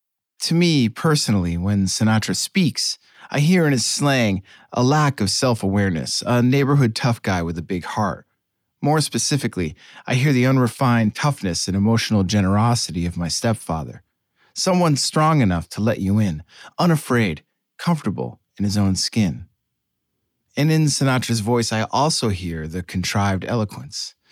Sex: male